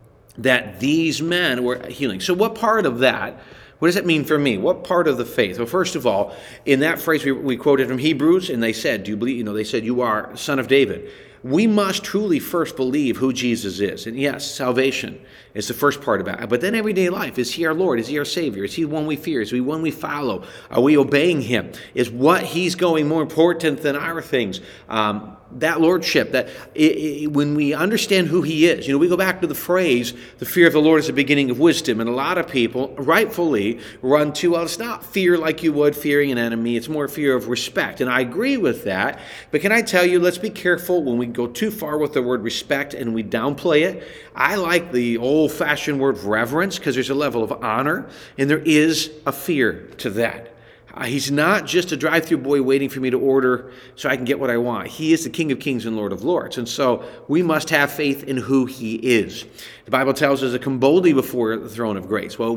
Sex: male